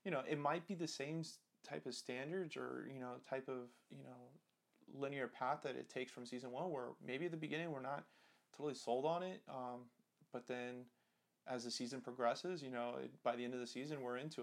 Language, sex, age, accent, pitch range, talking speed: English, male, 30-49, American, 120-130 Hz, 225 wpm